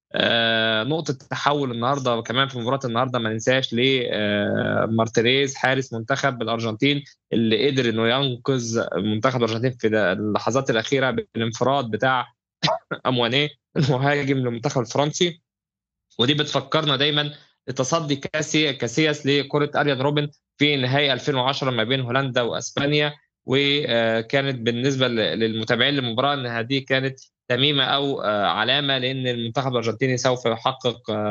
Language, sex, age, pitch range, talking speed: Arabic, male, 20-39, 115-140 Hz, 115 wpm